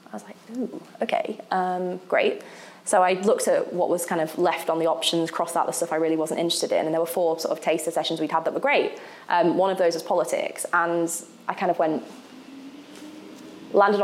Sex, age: female, 20-39